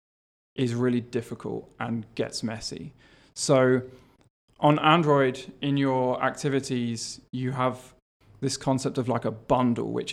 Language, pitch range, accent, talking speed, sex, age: English, 120-140 Hz, British, 125 wpm, male, 20-39